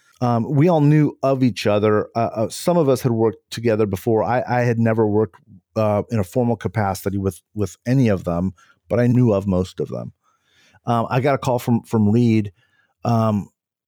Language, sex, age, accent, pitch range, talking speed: English, male, 50-69, American, 95-110 Hz, 205 wpm